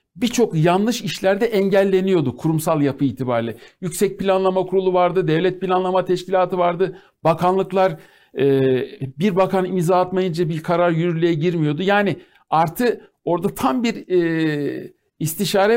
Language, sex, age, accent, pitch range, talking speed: Turkish, male, 60-79, native, 165-210 Hz, 115 wpm